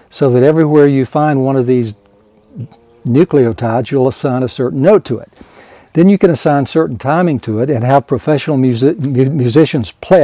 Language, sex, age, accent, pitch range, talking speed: English, male, 60-79, American, 115-150 Hz, 170 wpm